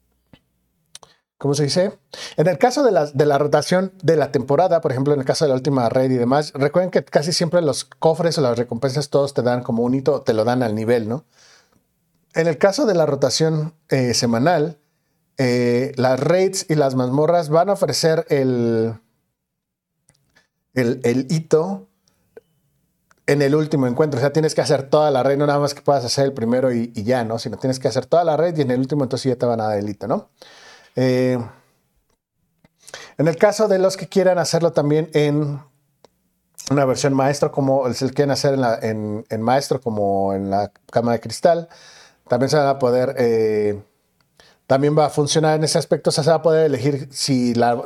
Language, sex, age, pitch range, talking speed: Spanish, male, 40-59, 125-160 Hz, 205 wpm